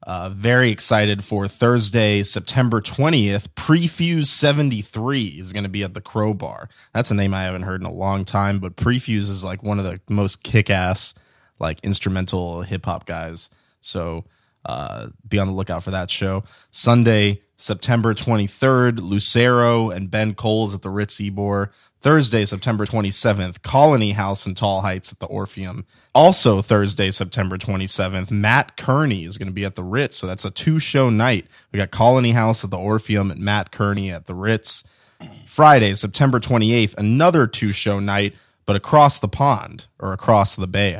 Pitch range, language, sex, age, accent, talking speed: 95-120 Hz, English, male, 20-39, American, 175 wpm